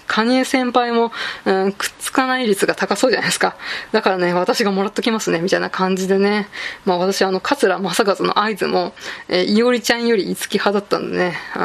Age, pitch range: 20-39, 190-235 Hz